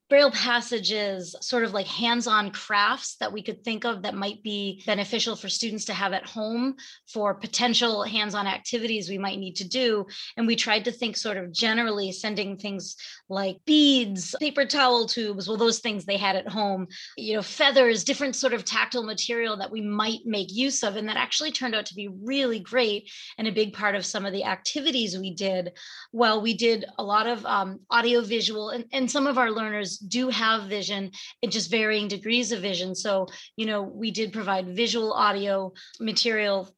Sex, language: female, English